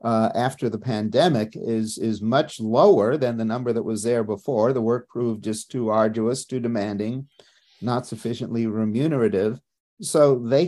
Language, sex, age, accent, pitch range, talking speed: English, male, 50-69, American, 110-130 Hz, 155 wpm